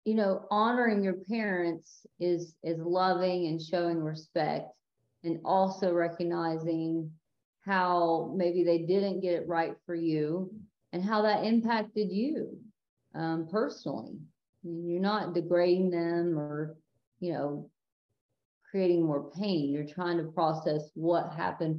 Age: 40-59